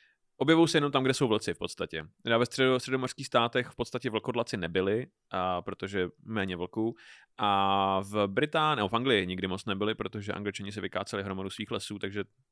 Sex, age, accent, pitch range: male, 30-49, native, 105-125 Hz